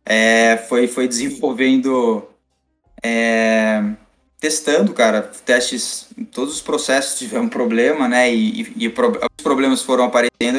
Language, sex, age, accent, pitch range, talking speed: Portuguese, male, 20-39, Brazilian, 115-175 Hz, 120 wpm